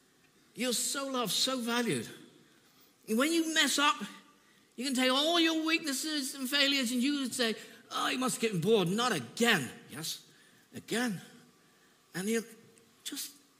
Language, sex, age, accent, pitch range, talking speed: English, male, 50-69, British, 175-255 Hz, 150 wpm